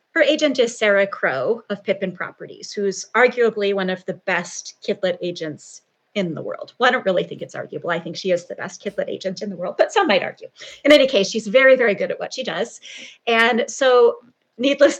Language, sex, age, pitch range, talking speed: English, female, 30-49, 185-235 Hz, 220 wpm